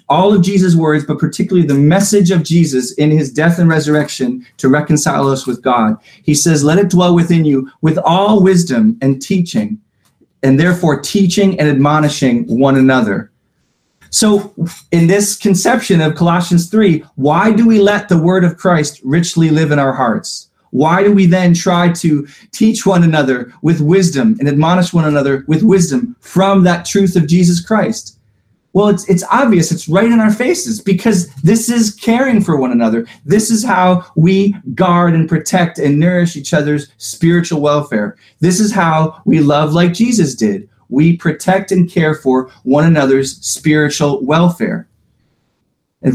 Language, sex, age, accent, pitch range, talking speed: English, male, 30-49, American, 150-195 Hz, 170 wpm